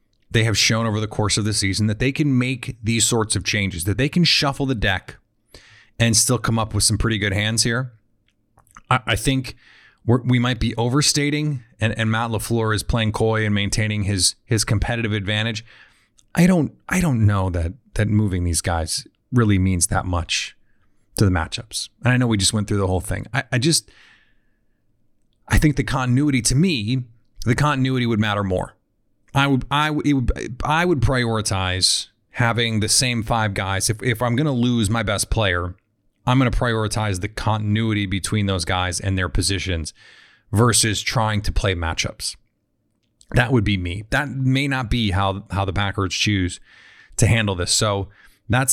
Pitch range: 105-130 Hz